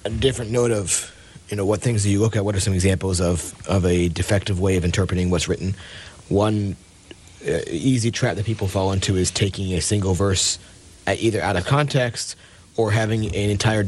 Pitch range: 90-105 Hz